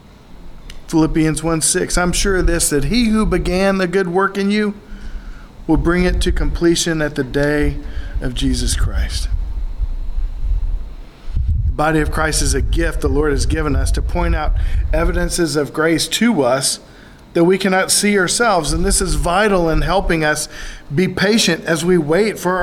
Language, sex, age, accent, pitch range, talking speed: English, male, 40-59, American, 120-180 Hz, 170 wpm